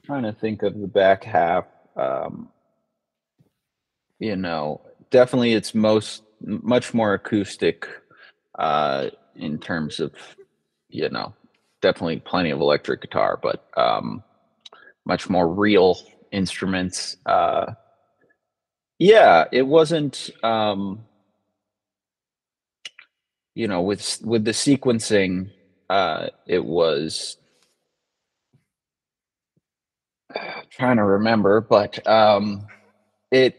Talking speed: 95 wpm